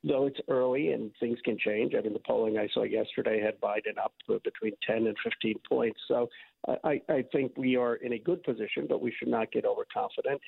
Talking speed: 220 wpm